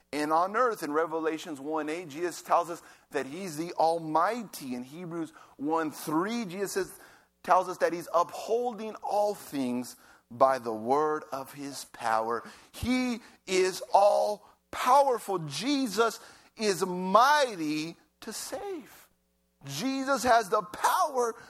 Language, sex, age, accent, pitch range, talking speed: English, male, 50-69, American, 165-255 Hz, 125 wpm